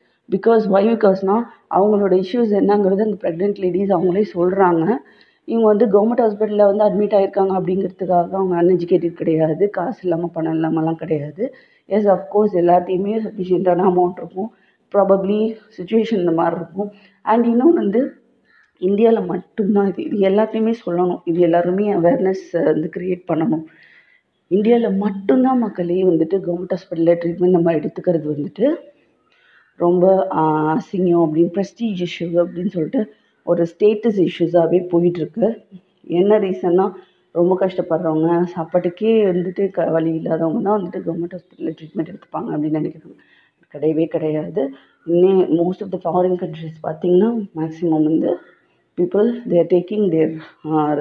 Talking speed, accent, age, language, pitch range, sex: 125 wpm, native, 30-49, Tamil, 170-205 Hz, female